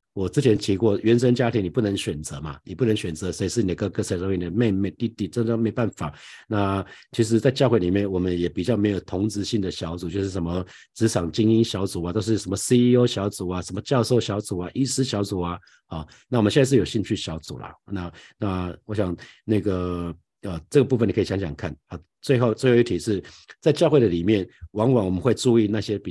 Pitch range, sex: 90-115 Hz, male